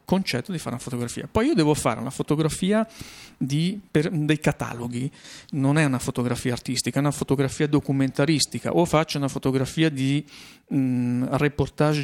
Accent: native